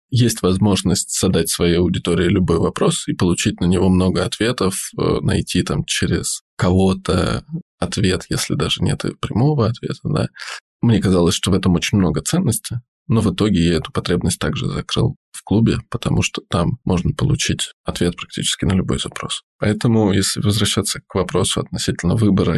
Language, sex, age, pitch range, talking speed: Russian, male, 20-39, 95-115 Hz, 155 wpm